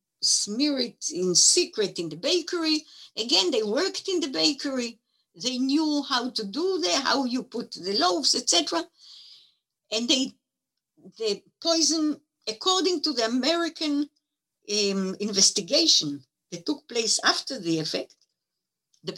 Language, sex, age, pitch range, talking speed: English, female, 60-79, 205-310 Hz, 130 wpm